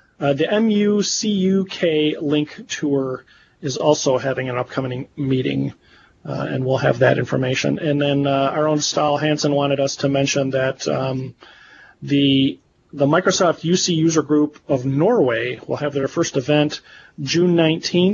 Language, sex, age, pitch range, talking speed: English, male, 40-59, 135-165 Hz, 145 wpm